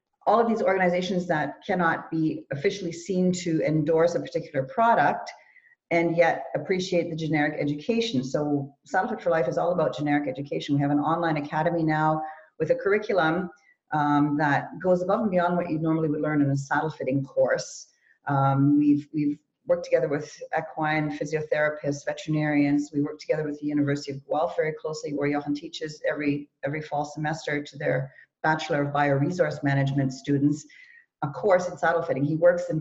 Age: 40-59